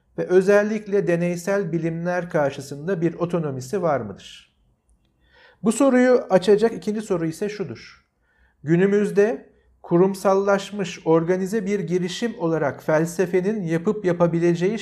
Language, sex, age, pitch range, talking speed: Turkish, male, 50-69, 170-215 Hz, 100 wpm